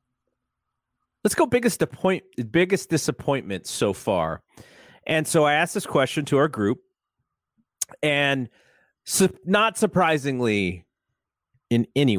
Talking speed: 105 wpm